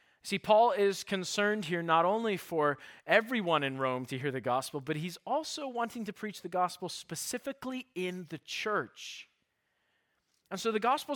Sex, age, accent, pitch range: male, 40-59, American, 145-200 Hz